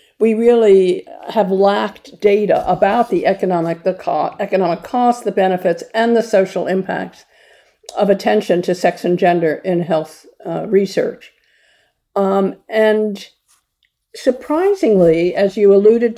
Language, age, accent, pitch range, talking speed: English, 50-69, American, 185-225 Hz, 120 wpm